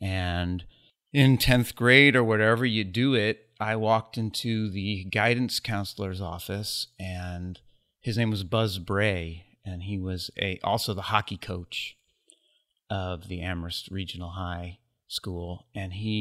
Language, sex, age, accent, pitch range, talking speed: English, male, 30-49, American, 90-110 Hz, 140 wpm